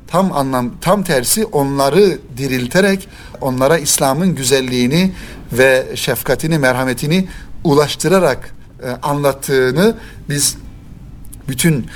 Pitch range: 135-175 Hz